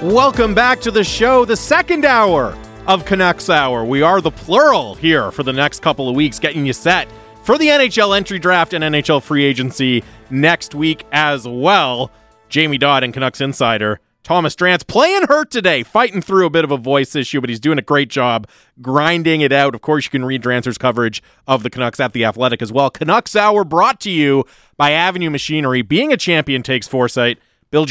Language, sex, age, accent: English, male, 30-49, American